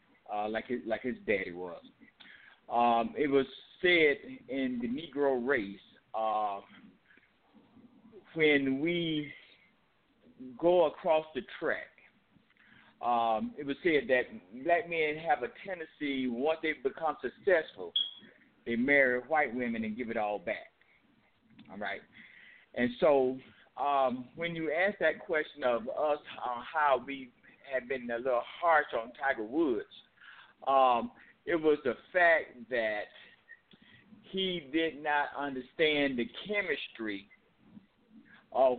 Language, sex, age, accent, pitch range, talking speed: English, male, 50-69, American, 125-175 Hz, 125 wpm